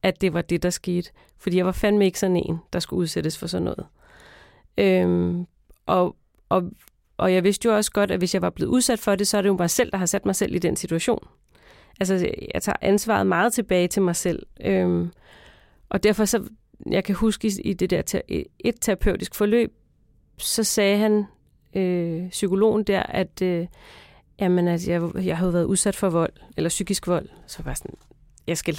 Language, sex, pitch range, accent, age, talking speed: Danish, female, 175-215 Hz, native, 30-49, 190 wpm